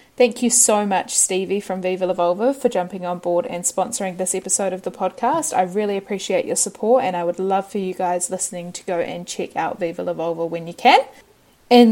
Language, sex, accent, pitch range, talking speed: English, female, Australian, 180-225 Hz, 225 wpm